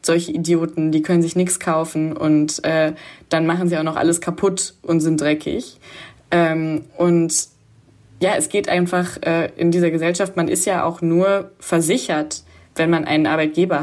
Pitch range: 160-185 Hz